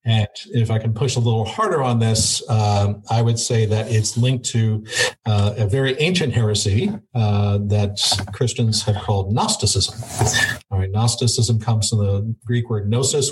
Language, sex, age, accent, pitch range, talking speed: English, male, 50-69, American, 105-125 Hz, 170 wpm